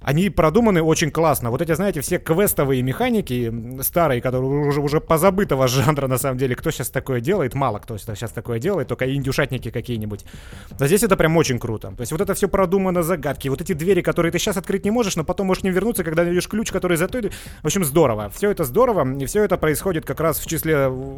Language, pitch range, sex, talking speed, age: Russian, 130-170 Hz, male, 225 wpm, 30-49